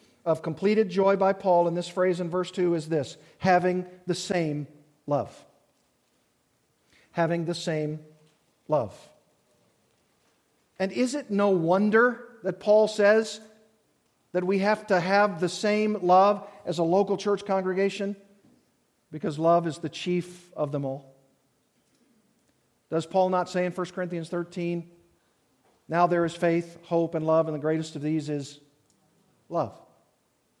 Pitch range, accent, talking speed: 170-205 Hz, American, 140 wpm